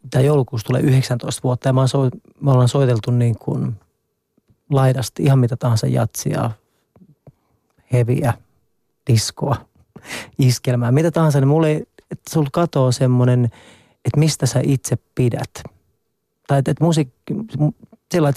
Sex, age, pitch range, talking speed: male, 30-49, 125-145 Hz, 115 wpm